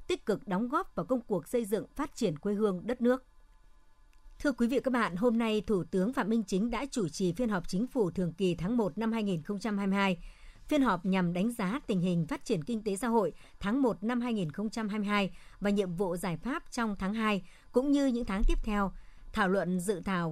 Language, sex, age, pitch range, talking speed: Vietnamese, male, 60-79, 190-245 Hz, 220 wpm